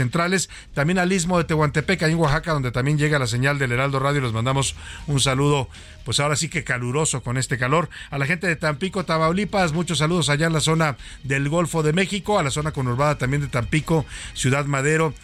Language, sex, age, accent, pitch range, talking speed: Spanish, male, 50-69, Mexican, 140-175 Hz, 215 wpm